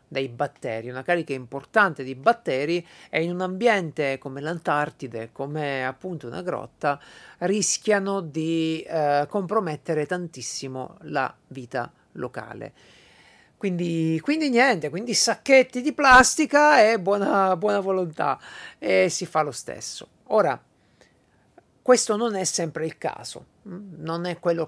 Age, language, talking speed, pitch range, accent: 50-69, Italian, 125 wpm, 145-205 Hz, native